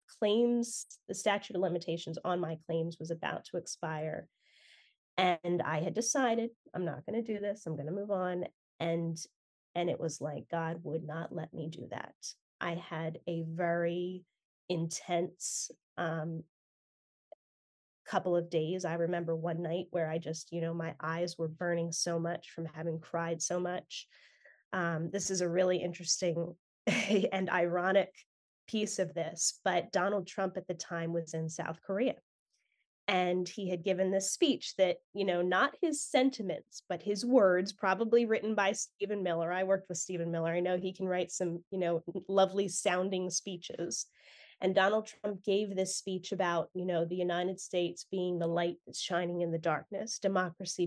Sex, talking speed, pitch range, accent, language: female, 170 wpm, 165-195 Hz, American, English